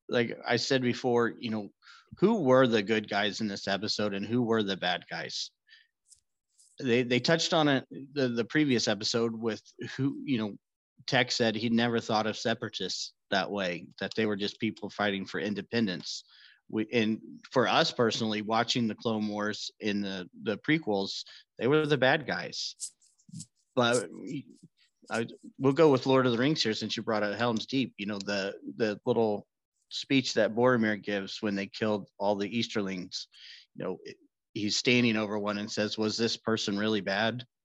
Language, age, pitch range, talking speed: English, 30-49, 105-125 Hz, 180 wpm